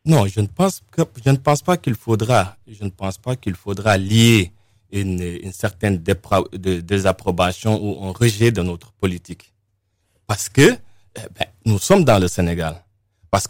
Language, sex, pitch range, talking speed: French, male, 100-125 Hz, 180 wpm